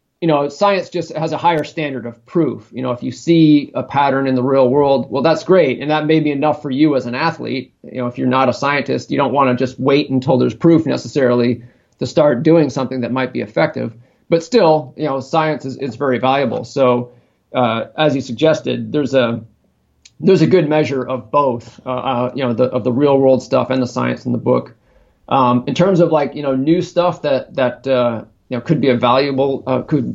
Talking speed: 235 wpm